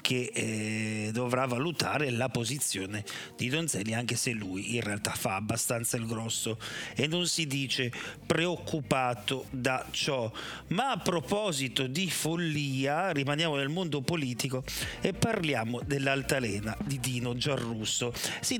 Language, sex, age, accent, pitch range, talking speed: Italian, male, 40-59, native, 120-150 Hz, 130 wpm